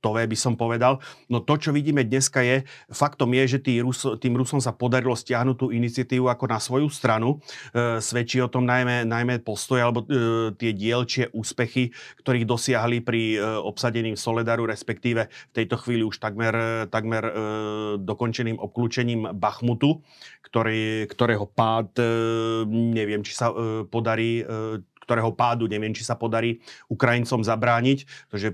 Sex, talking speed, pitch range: male, 150 wpm, 110-125 Hz